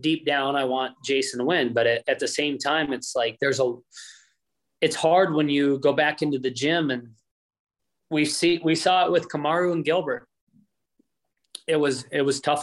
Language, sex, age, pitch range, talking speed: English, male, 20-39, 130-160 Hz, 190 wpm